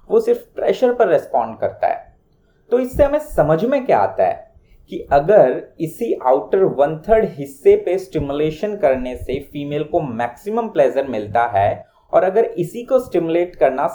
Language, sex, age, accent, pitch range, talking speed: Hindi, male, 30-49, native, 145-220 Hz, 50 wpm